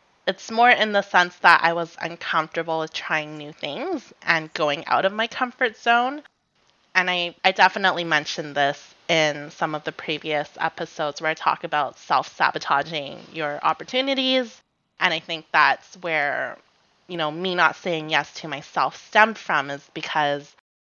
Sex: female